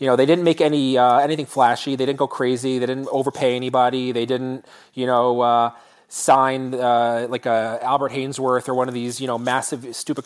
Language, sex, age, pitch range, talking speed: English, male, 30-49, 125-145 Hz, 210 wpm